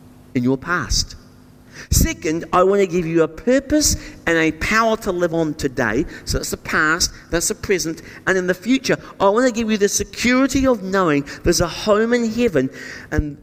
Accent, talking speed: British, 195 wpm